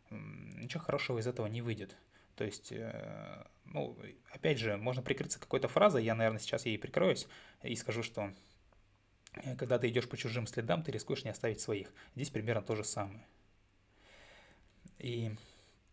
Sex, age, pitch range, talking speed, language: male, 20-39, 105-125 Hz, 150 wpm, Russian